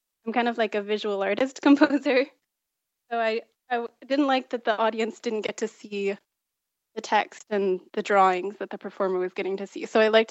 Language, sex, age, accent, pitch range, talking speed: English, female, 20-39, American, 195-225 Hz, 205 wpm